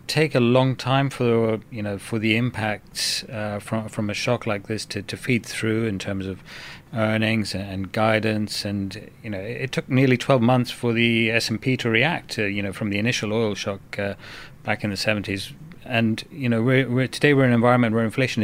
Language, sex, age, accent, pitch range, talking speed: English, male, 30-49, British, 105-125 Hz, 210 wpm